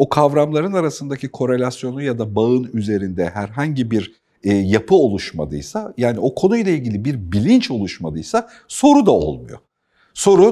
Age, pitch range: 50-69, 110-160 Hz